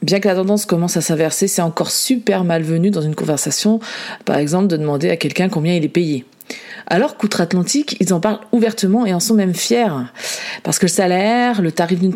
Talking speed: 205 wpm